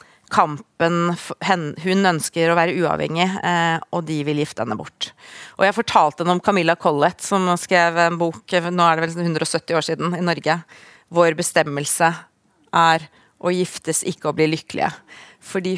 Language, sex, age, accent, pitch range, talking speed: English, female, 30-49, Swedish, 175-220 Hz, 160 wpm